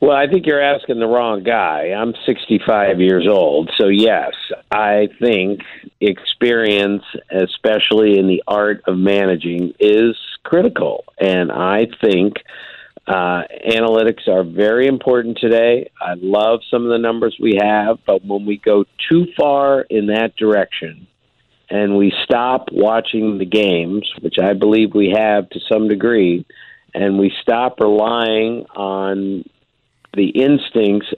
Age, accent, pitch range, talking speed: 50-69, American, 100-125 Hz, 140 wpm